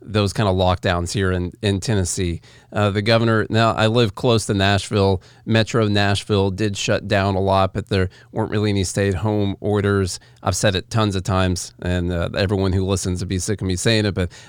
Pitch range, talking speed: 100-120 Hz, 215 wpm